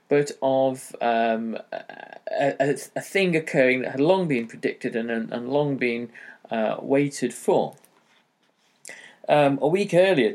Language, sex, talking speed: English, male, 140 wpm